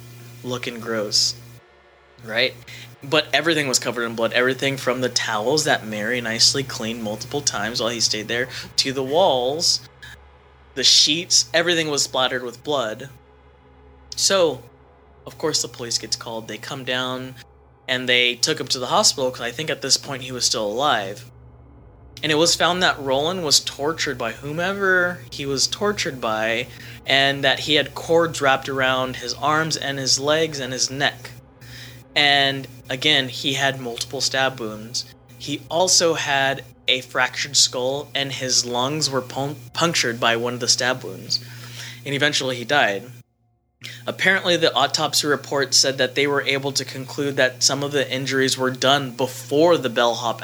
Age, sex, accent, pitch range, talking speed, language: 20-39, male, American, 120-140 Hz, 165 wpm, English